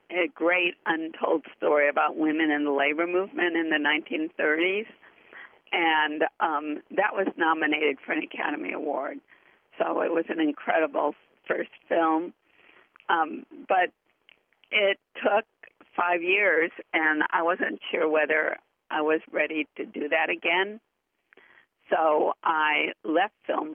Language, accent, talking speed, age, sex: English, American, 130 wpm, 50-69, female